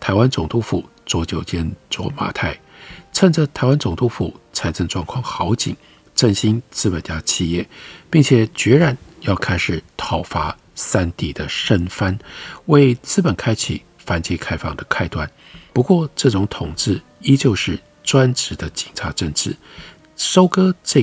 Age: 50-69